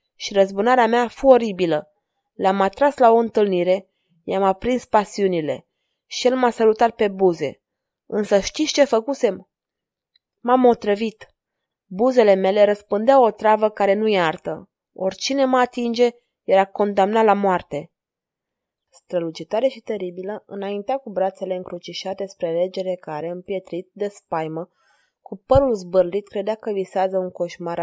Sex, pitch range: female, 185-230 Hz